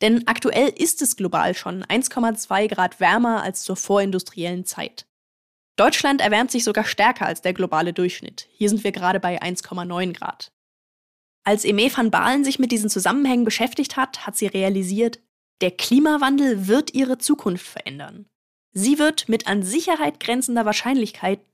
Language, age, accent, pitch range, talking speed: German, 10-29, German, 195-255 Hz, 155 wpm